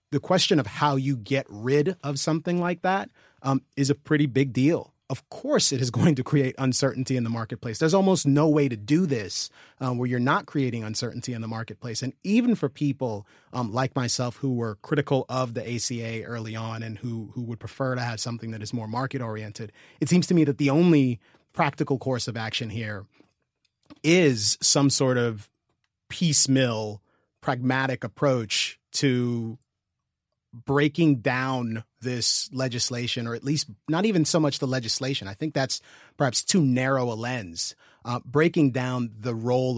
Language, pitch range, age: English, 115-140 Hz, 30-49